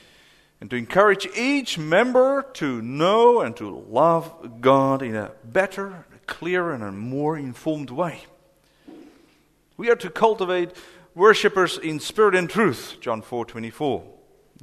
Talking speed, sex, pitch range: 125 wpm, male, 135-205 Hz